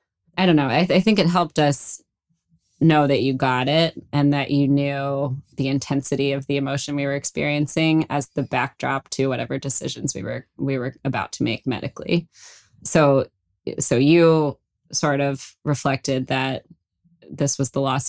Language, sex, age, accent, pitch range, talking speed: English, female, 20-39, American, 130-150 Hz, 170 wpm